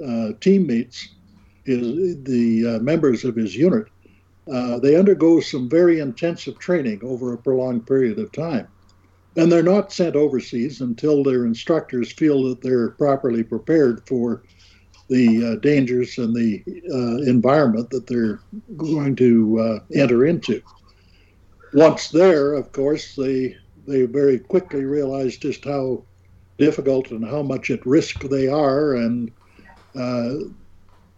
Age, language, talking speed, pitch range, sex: 60-79, English, 135 wpm, 115-150 Hz, male